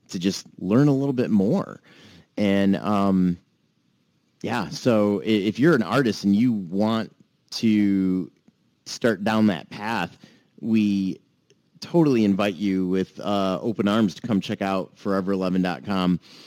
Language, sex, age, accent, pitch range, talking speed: English, male, 30-49, American, 95-110 Hz, 130 wpm